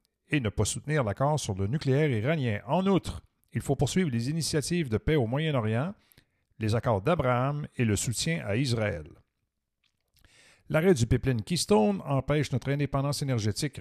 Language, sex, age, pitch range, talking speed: French, male, 50-69, 110-150 Hz, 155 wpm